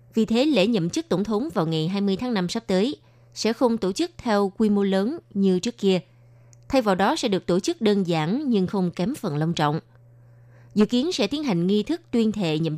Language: Vietnamese